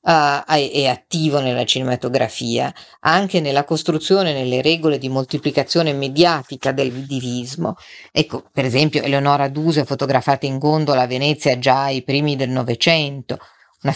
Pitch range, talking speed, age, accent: 135-170 Hz, 135 wpm, 50-69, native